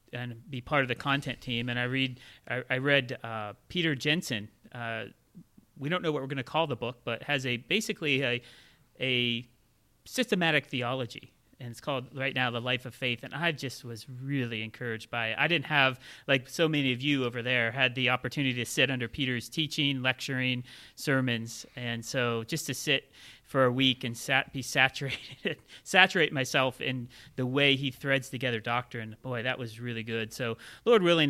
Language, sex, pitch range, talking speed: English, male, 120-140 Hz, 200 wpm